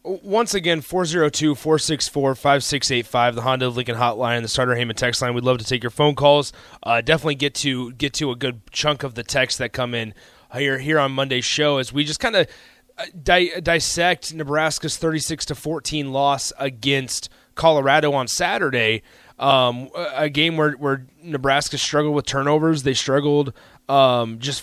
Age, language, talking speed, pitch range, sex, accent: 30-49, English, 190 wpm, 130-155 Hz, male, American